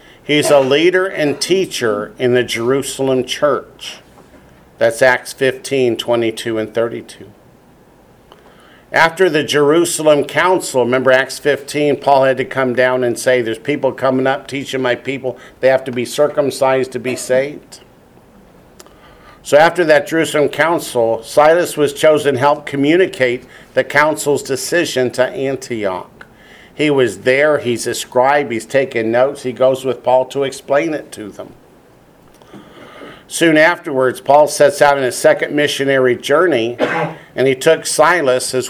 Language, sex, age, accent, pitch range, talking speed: English, male, 50-69, American, 125-145 Hz, 145 wpm